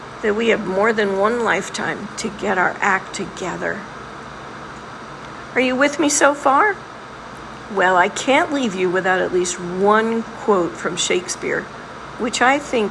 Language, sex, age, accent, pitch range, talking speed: English, female, 50-69, American, 195-255 Hz, 155 wpm